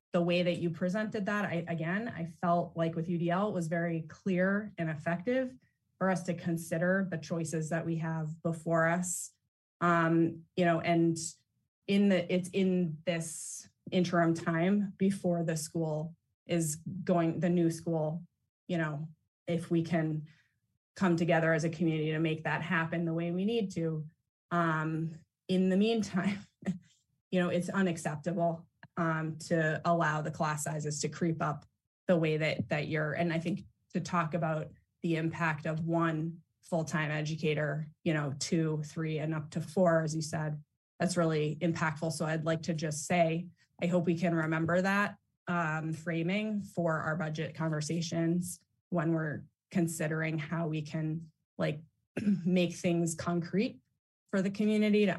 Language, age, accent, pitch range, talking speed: English, 20-39, American, 160-175 Hz, 160 wpm